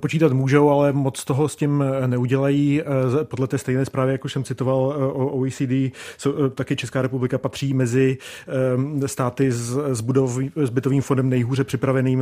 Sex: male